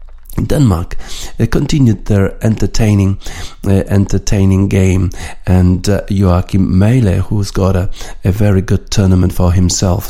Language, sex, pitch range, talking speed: Polish, male, 90-100 Hz, 125 wpm